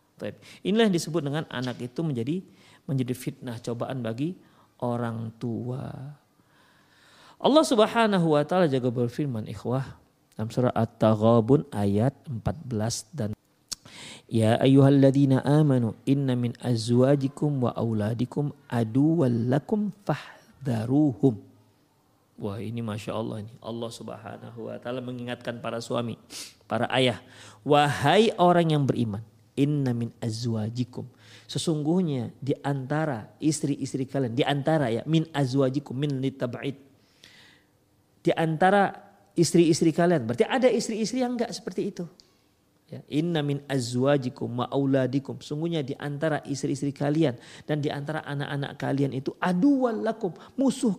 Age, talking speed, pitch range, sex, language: 40-59, 110 wpm, 120-160 Hz, male, Indonesian